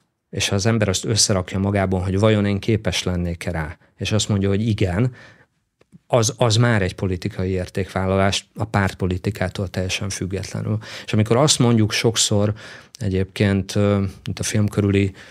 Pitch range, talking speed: 95-110 Hz, 145 wpm